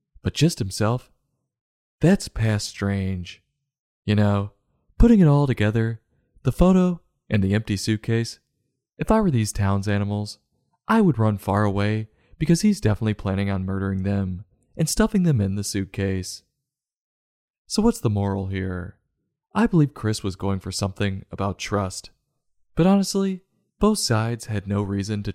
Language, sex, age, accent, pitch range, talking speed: English, male, 20-39, American, 100-130 Hz, 150 wpm